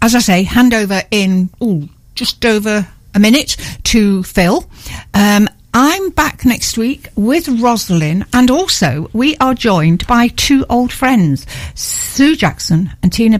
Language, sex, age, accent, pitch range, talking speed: English, female, 60-79, British, 180-245 Hz, 145 wpm